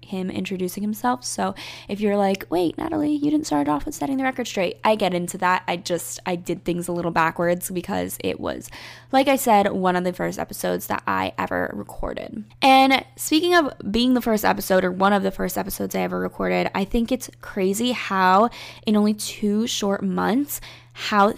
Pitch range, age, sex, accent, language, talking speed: 185-240 Hz, 10-29, female, American, English, 200 wpm